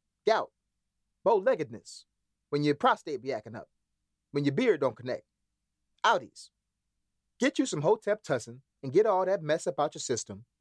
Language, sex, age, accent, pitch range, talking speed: English, male, 30-49, American, 105-165 Hz, 160 wpm